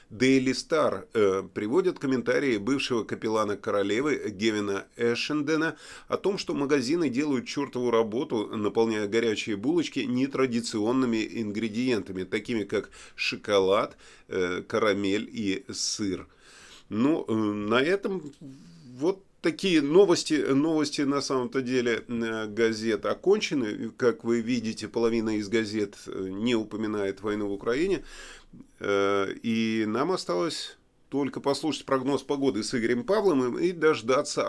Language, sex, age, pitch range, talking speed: Russian, male, 30-49, 105-145 Hz, 110 wpm